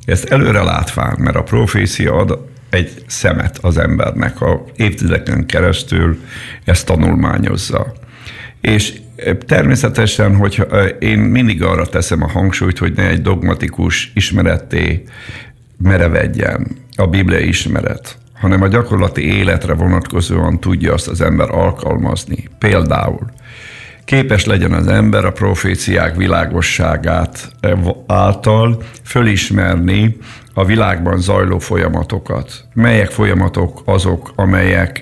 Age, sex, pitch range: 50-69, male, 90-115 Hz